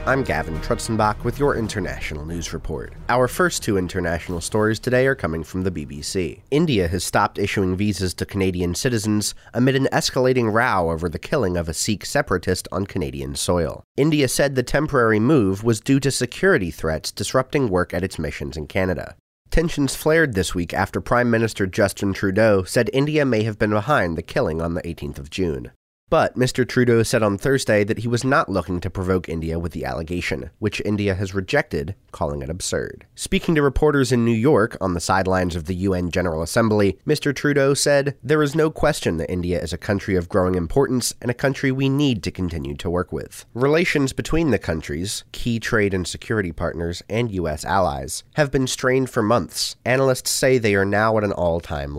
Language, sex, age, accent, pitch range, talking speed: English, male, 30-49, American, 90-125 Hz, 195 wpm